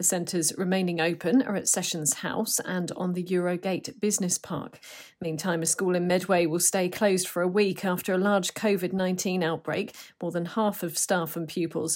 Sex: female